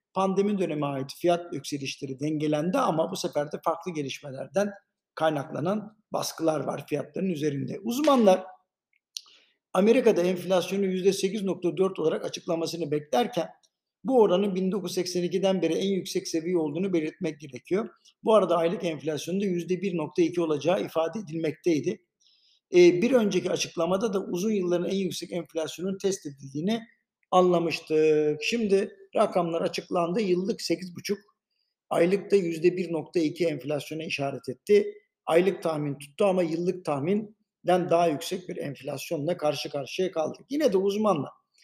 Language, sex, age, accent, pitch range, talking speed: Turkish, male, 60-79, native, 160-200 Hz, 115 wpm